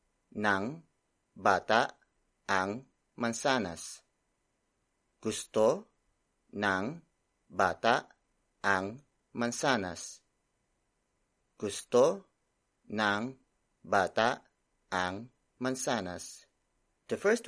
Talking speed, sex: 55 wpm, male